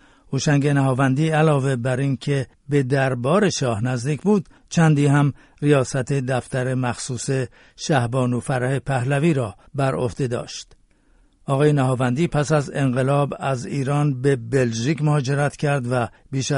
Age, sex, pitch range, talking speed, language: 50-69, male, 125-145 Hz, 125 wpm, Persian